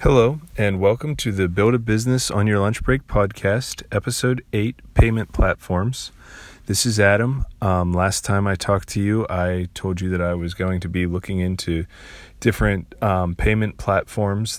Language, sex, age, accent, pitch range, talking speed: English, male, 30-49, American, 90-110 Hz, 175 wpm